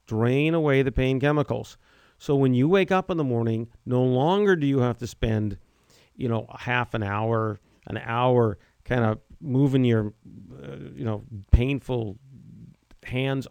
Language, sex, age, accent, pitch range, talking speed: English, male, 50-69, American, 110-135 Hz, 160 wpm